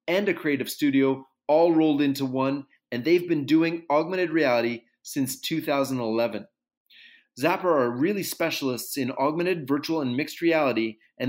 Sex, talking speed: male, 145 wpm